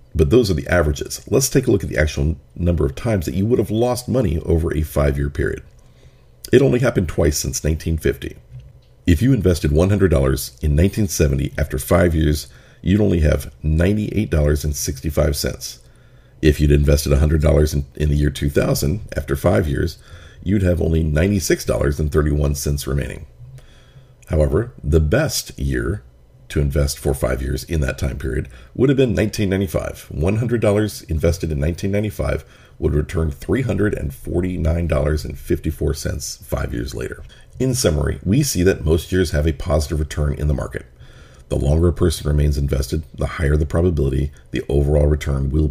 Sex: male